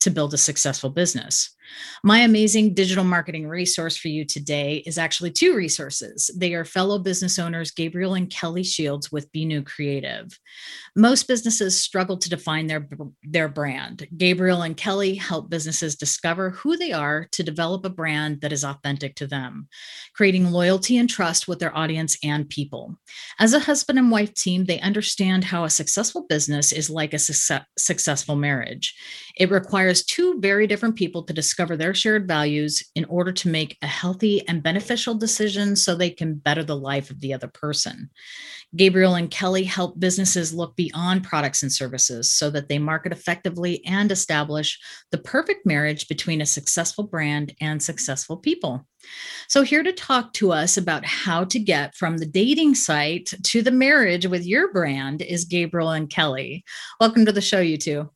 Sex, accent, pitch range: female, American, 150-195 Hz